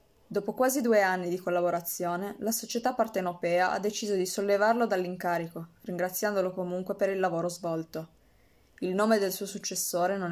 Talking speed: 150 wpm